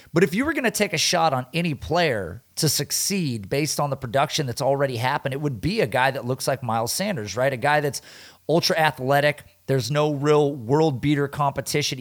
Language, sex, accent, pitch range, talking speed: English, male, American, 135-170 Hz, 215 wpm